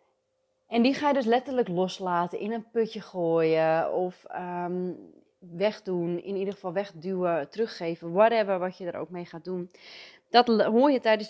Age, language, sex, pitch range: 30-49, Dutch, female, 170-230 Hz